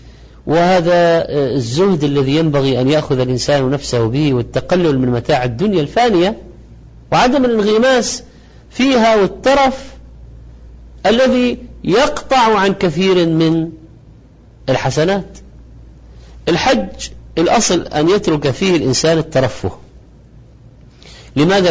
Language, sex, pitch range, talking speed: Arabic, male, 125-190 Hz, 90 wpm